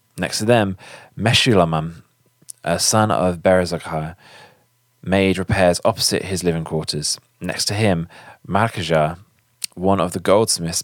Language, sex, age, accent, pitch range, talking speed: English, male, 20-39, British, 90-130 Hz, 120 wpm